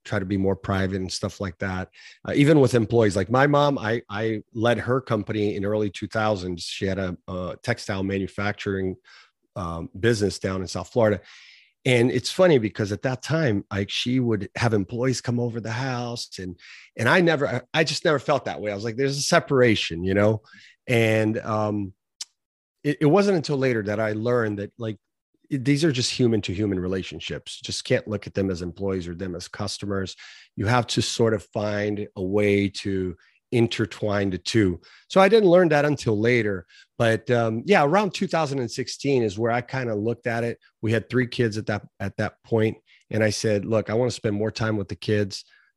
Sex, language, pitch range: male, English, 100-120 Hz